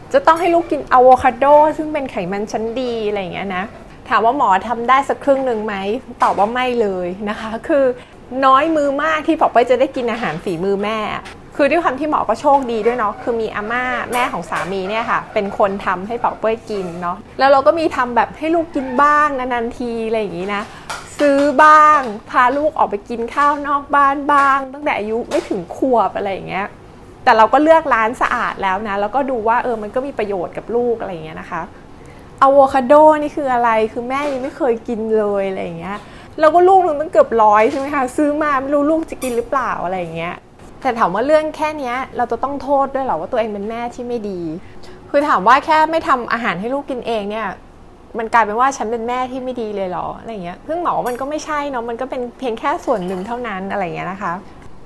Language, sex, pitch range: English, female, 220-285 Hz